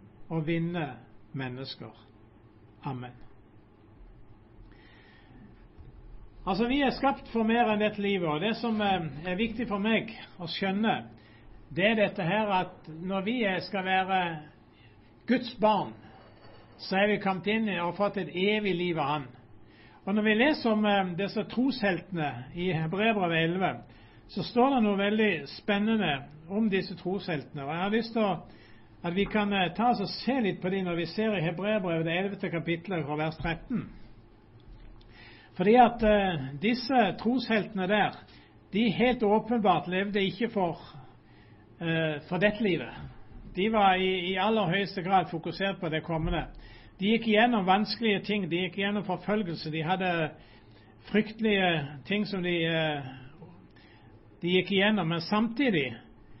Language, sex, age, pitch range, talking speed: English, male, 60-79, 130-205 Hz, 145 wpm